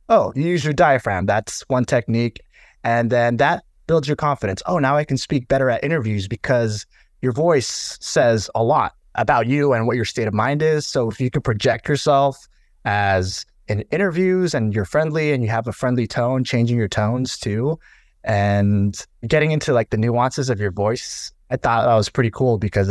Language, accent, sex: English, American, male